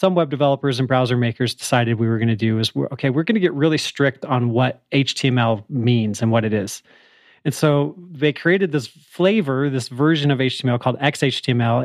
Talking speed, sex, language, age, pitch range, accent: 205 wpm, male, English, 30-49, 125-155 Hz, American